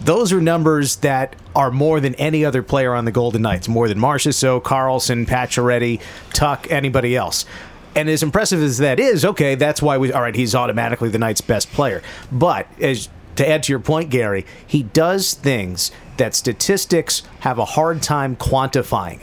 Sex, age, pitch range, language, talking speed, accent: male, 40-59, 115-155 Hz, English, 185 wpm, American